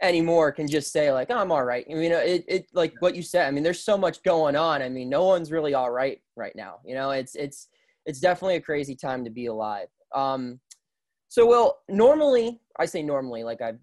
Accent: American